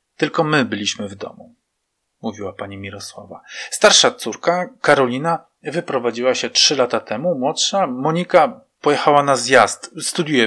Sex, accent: male, native